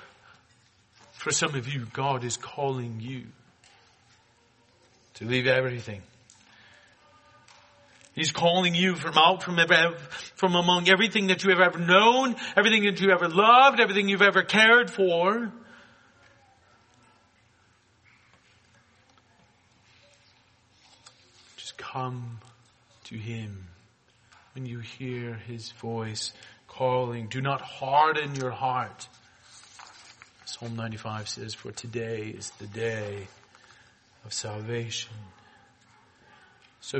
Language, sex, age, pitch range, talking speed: English, male, 40-59, 115-165 Hz, 100 wpm